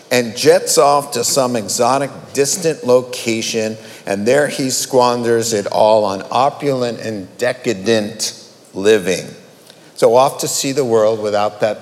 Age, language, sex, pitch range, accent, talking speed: 50-69, English, male, 110-165 Hz, American, 135 wpm